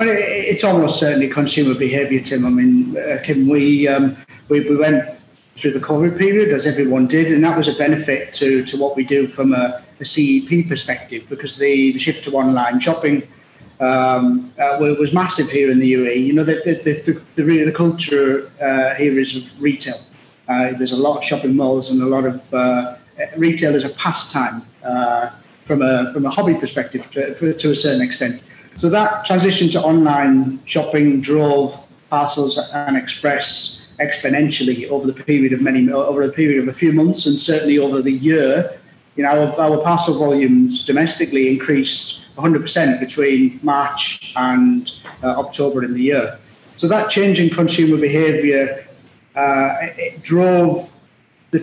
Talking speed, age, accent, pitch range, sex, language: 170 wpm, 30-49, British, 135-160 Hz, male, English